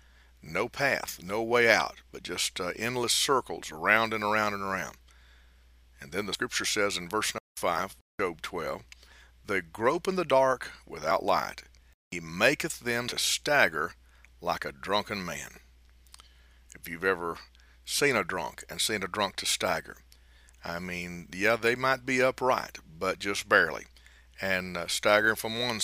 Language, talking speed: English, 160 wpm